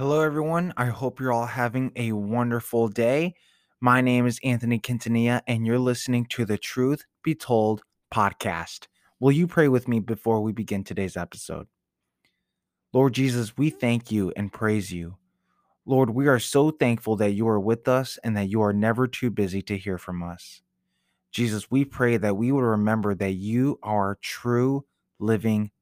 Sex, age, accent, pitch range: male, 20-39, American, 100-125 Hz